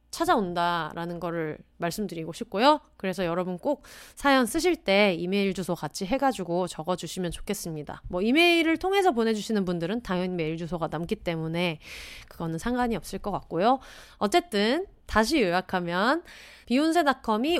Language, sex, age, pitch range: Korean, female, 30-49, 180-270 Hz